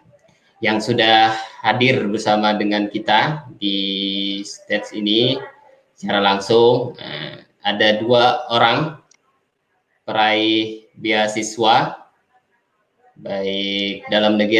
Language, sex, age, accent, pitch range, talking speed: Indonesian, male, 20-39, native, 100-115 Hz, 80 wpm